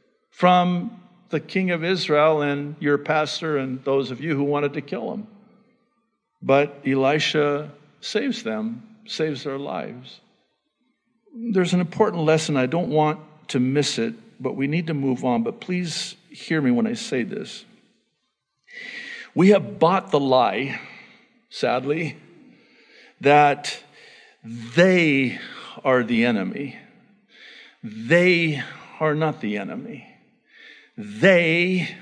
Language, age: English, 50-69